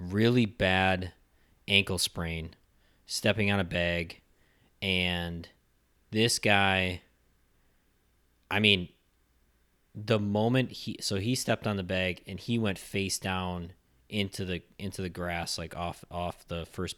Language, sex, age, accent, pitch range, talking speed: English, male, 20-39, American, 85-105 Hz, 130 wpm